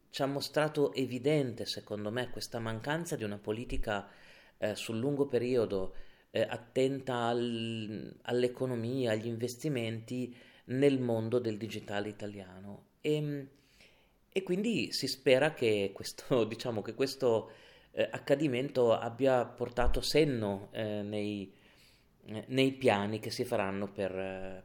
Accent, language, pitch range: native, Italian, 105-135 Hz